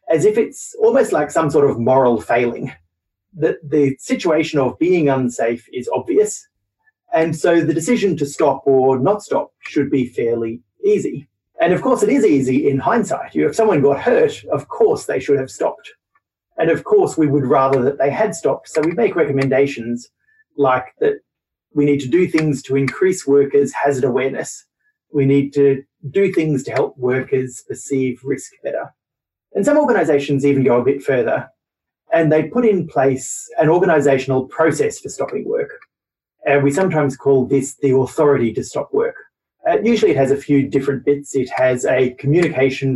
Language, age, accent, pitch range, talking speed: English, 30-49, Australian, 130-195 Hz, 175 wpm